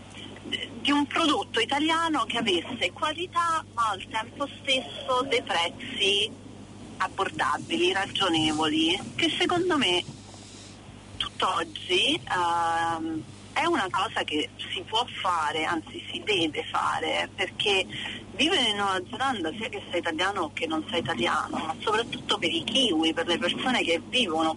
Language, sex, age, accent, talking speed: Italian, female, 40-59, native, 135 wpm